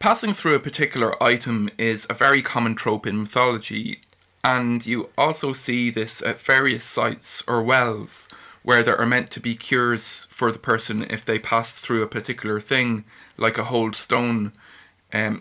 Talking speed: 170 wpm